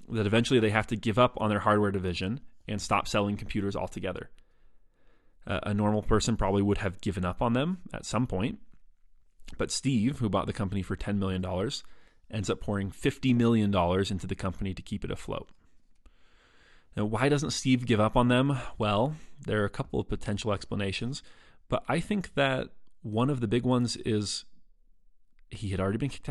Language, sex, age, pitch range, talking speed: English, male, 30-49, 100-125 Hz, 185 wpm